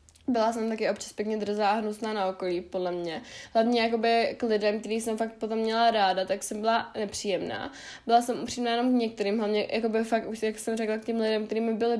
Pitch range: 205-230 Hz